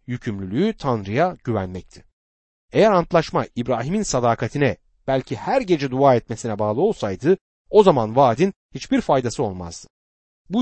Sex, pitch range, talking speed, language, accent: male, 105-175 Hz, 120 wpm, Turkish, native